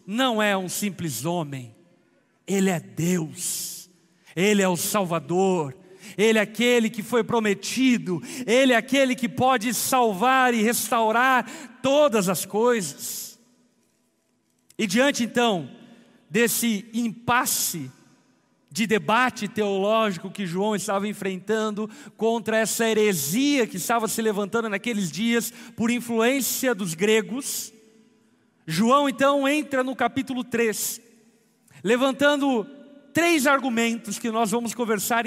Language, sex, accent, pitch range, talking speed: Portuguese, male, Brazilian, 210-260 Hz, 115 wpm